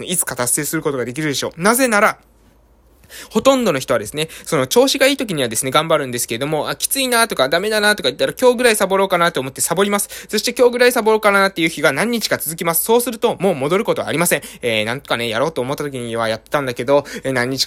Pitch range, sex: 155-220 Hz, male